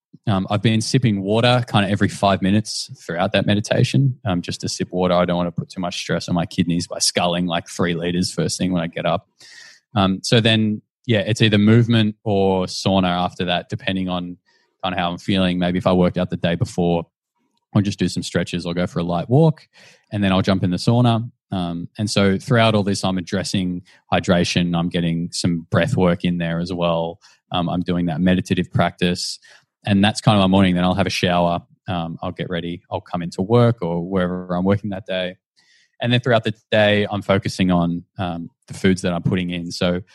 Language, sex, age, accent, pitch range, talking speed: English, male, 20-39, Australian, 90-105 Hz, 220 wpm